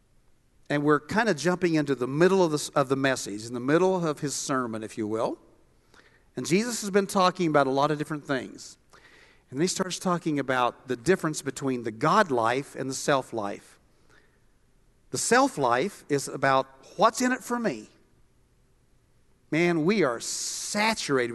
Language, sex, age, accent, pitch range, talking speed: English, male, 50-69, American, 135-195 Hz, 170 wpm